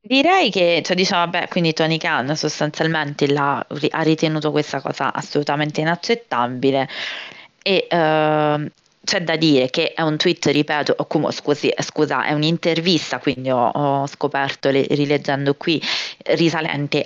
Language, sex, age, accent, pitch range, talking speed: Italian, female, 20-39, native, 135-160 Hz, 135 wpm